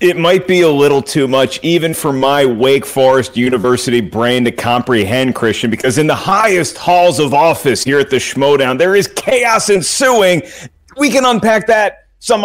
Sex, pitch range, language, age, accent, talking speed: male, 140-205 Hz, English, 40-59, American, 180 wpm